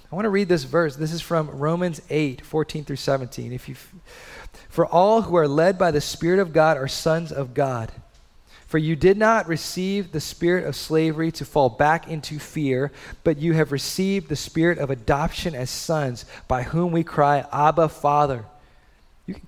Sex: male